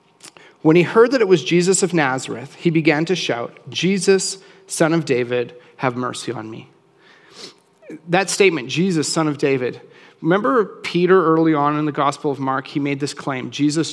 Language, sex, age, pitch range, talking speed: English, male, 30-49, 140-185 Hz, 175 wpm